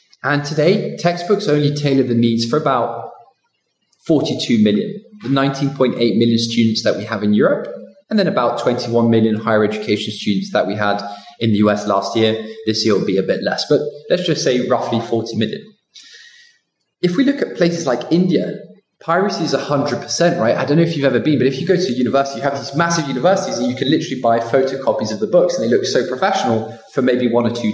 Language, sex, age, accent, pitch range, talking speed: English, male, 20-39, British, 120-170 Hz, 215 wpm